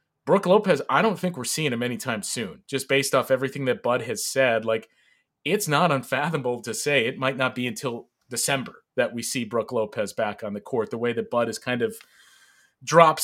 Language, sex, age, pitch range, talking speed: English, male, 30-49, 120-145 Hz, 215 wpm